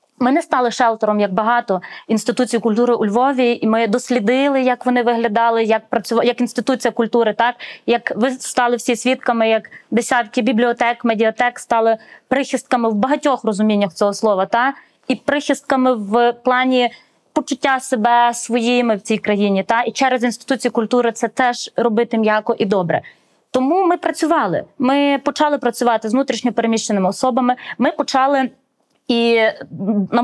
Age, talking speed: 20-39, 140 wpm